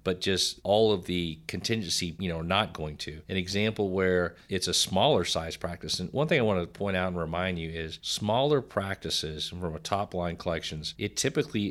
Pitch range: 85-100 Hz